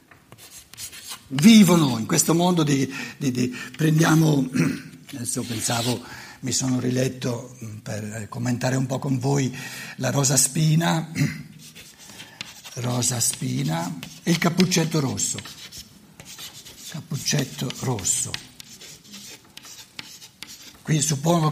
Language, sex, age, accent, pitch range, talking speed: Italian, male, 60-79, native, 135-200 Hz, 90 wpm